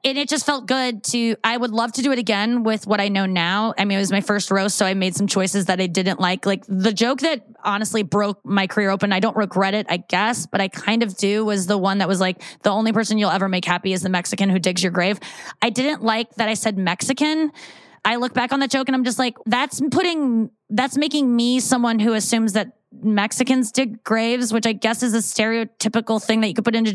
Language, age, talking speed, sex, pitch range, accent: English, 20-39, 260 wpm, female, 200-245 Hz, American